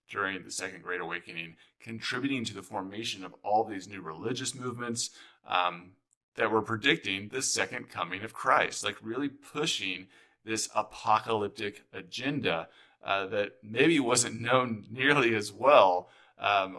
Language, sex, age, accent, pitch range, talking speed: English, male, 30-49, American, 90-115 Hz, 140 wpm